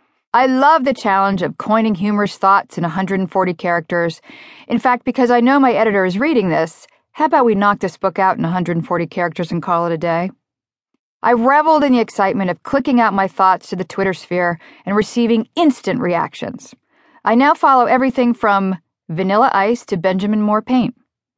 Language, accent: English, American